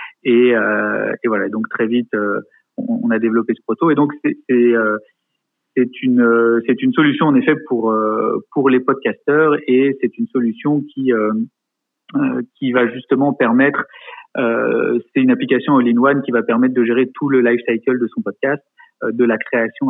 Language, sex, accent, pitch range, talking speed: French, male, French, 115-165 Hz, 170 wpm